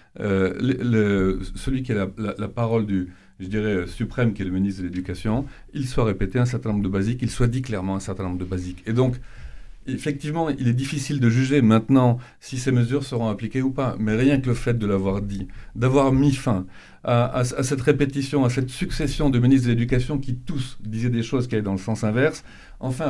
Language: French